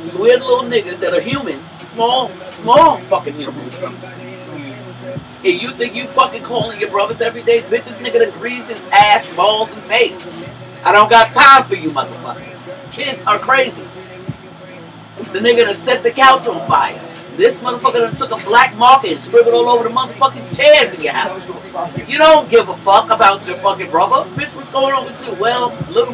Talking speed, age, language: 190 wpm, 40-59, English